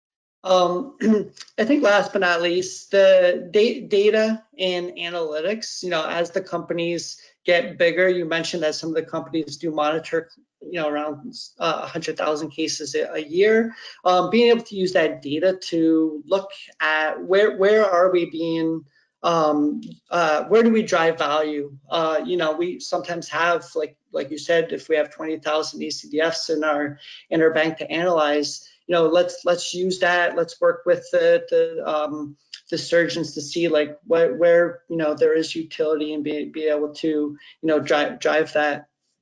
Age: 30-49